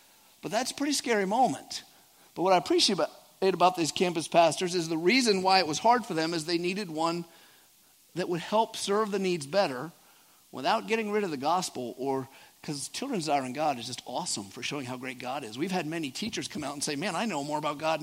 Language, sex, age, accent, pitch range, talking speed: English, male, 50-69, American, 150-200 Hz, 230 wpm